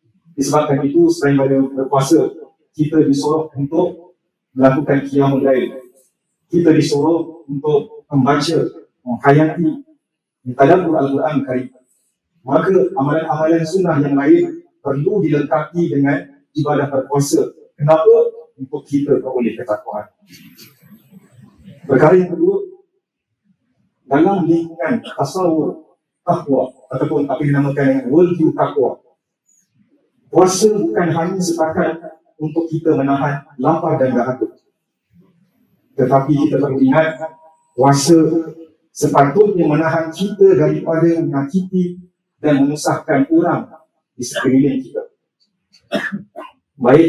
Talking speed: 95 wpm